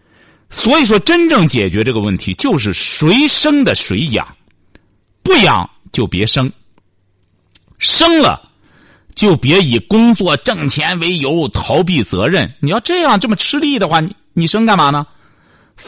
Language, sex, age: Chinese, male, 50-69